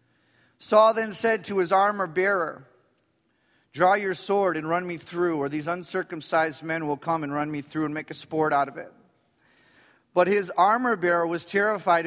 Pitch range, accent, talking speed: 165-200 Hz, American, 175 wpm